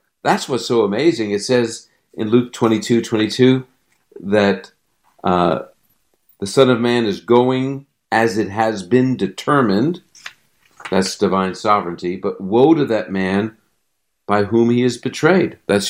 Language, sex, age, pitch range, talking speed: English, male, 50-69, 105-125 Hz, 140 wpm